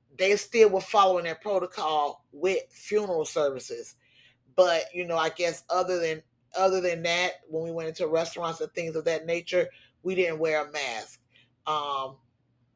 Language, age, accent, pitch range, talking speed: English, 30-49, American, 165-205 Hz, 165 wpm